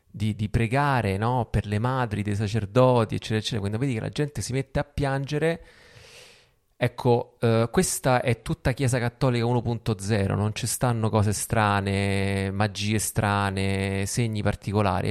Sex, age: male, 30-49